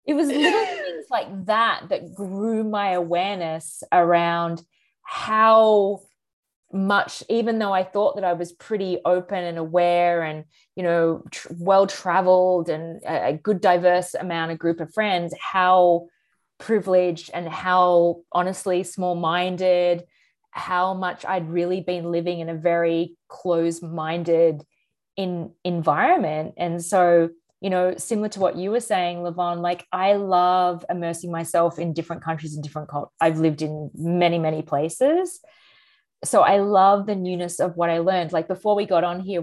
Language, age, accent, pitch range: English, 20-39, Australian, 170-200 Hz